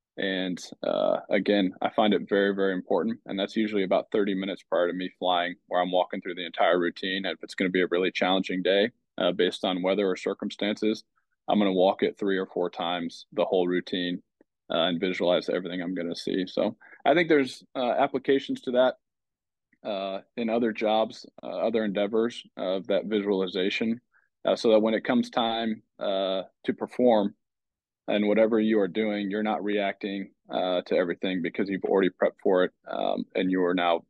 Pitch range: 95-120 Hz